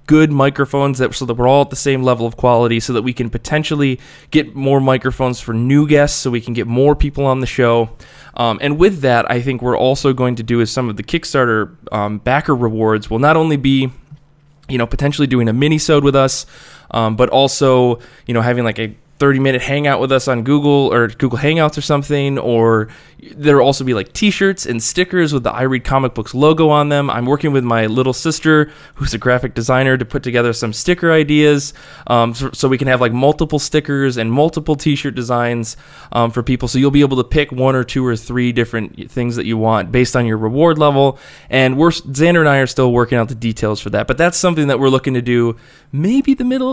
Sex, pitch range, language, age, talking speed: male, 120-145 Hz, English, 20-39, 230 wpm